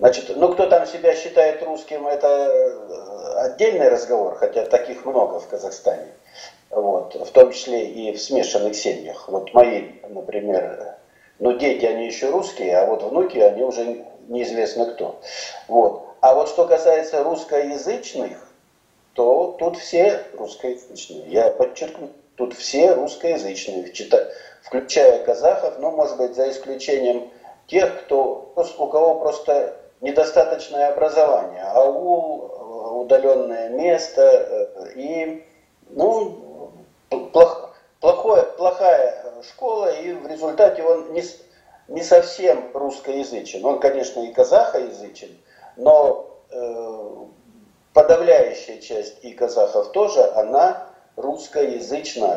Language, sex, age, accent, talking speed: Russian, male, 50-69, native, 110 wpm